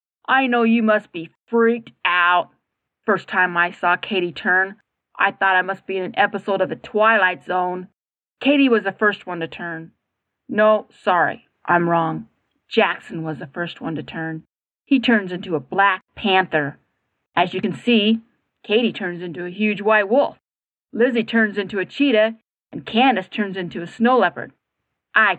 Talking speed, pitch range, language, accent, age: 175 wpm, 180-220 Hz, English, American, 30-49